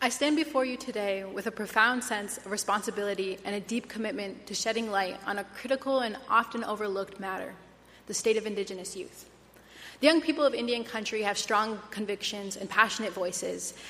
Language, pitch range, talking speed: English, 195-225 Hz, 180 wpm